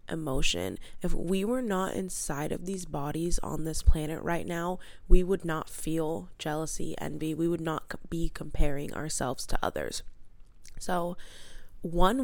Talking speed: 145 wpm